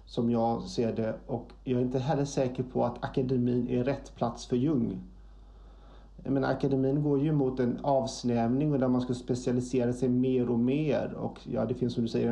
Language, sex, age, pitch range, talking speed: Swedish, male, 30-49, 125-135 Hz, 200 wpm